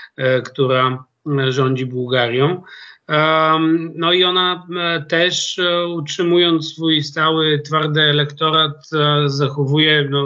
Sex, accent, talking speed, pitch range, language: male, native, 80 wpm, 140-170 Hz, Polish